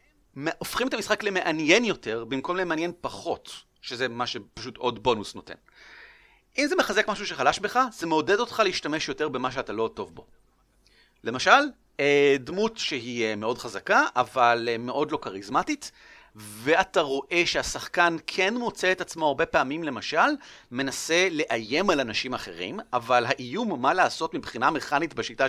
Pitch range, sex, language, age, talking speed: 130-190 Hz, male, Hebrew, 40-59, 145 wpm